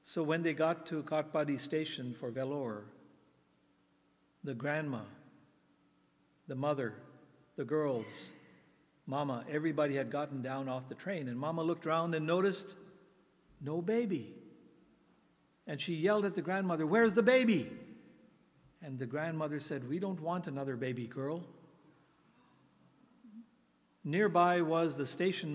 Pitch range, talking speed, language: 145-180 Hz, 125 wpm, English